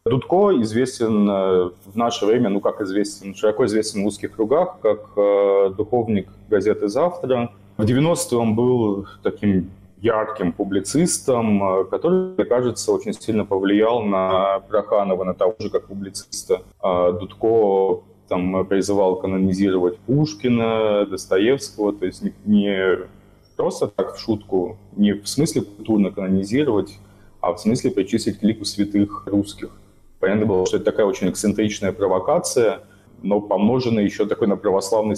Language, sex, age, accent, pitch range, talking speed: Russian, male, 20-39, native, 100-115 Hz, 135 wpm